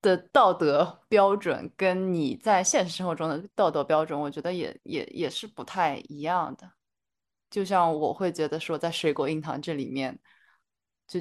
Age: 20-39